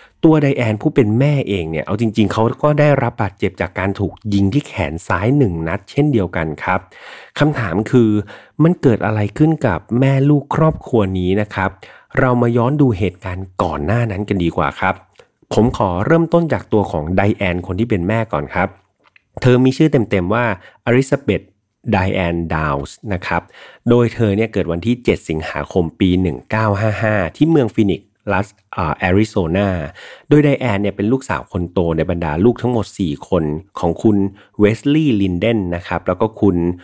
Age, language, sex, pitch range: 30-49, Thai, male, 90-120 Hz